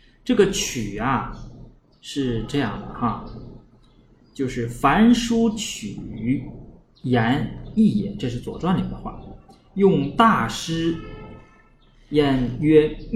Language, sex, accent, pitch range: Chinese, male, native, 125-200 Hz